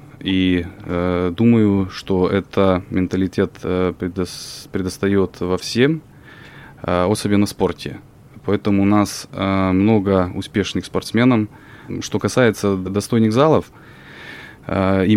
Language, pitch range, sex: Russian, 95-110 Hz, male